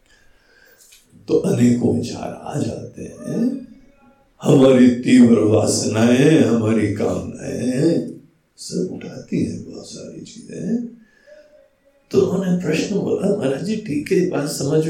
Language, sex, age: Hindi, male, 60-79